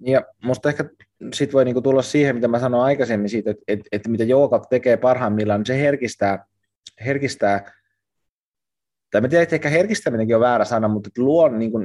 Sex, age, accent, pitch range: male, 20-39, native, 100-120 Hz